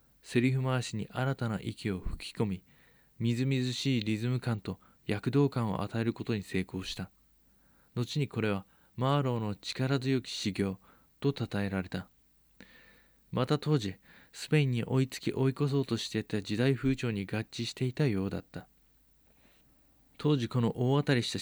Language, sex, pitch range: Japanese, male, 105-130 Hz